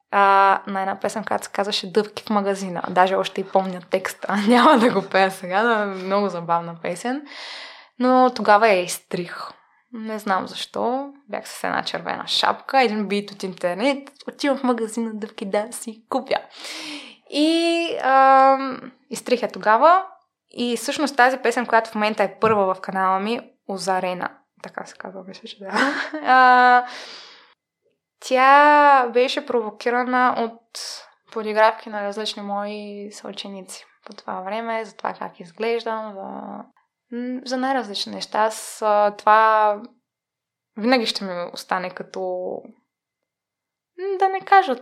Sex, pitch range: female, 200-255 Hz